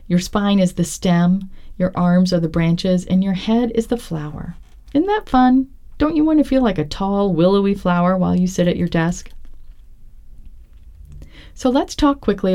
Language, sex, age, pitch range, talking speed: English, female, 40-59, 170-225 Hz, 185 wpm